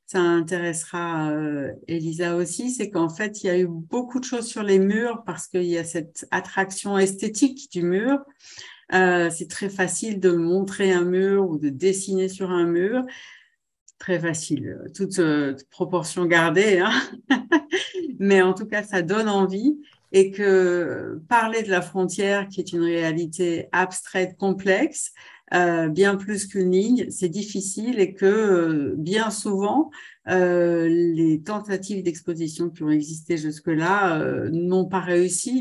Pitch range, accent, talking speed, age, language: 170-200 Hz, French, 155 wpm, 50-69, French